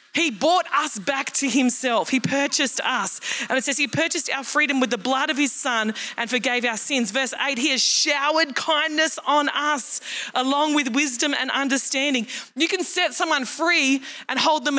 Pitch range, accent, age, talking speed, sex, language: 235-290 Hz, Australian, 20-39, 190 wpm, female, English